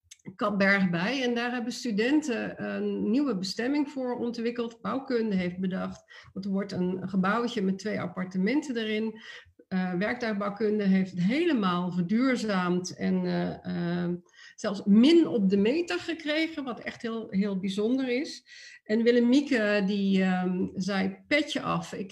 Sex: female